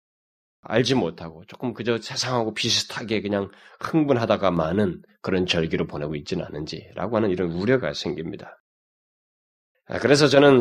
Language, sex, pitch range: Korean, male, 95-145 Hz